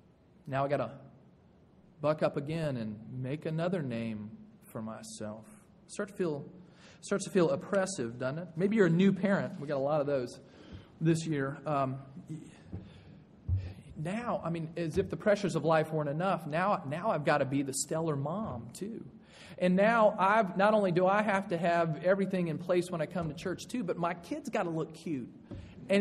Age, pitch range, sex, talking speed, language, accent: 40-59, 145-195 Hz, male, 190 wpm, English, American